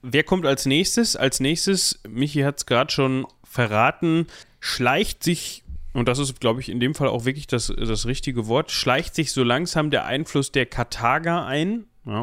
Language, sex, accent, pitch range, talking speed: German, male, German, 110-135 Hz, 185 wpm